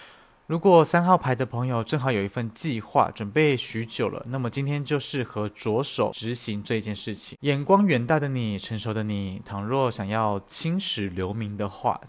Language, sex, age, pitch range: Chinese, male, 20-39, 105-140 Hz